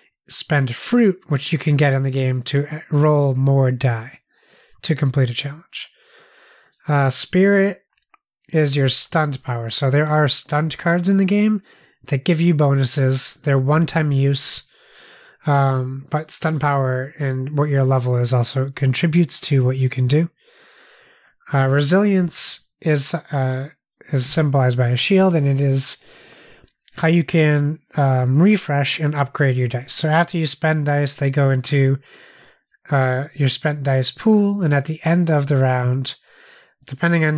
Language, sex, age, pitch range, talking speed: English, male, 30-49, 135-160 Hz, 155 wpm